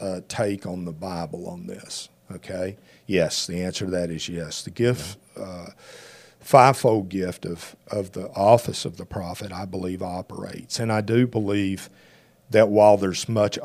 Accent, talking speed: American, 165 wpm